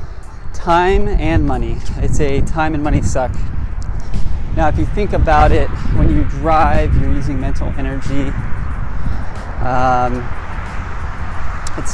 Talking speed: 120 wpm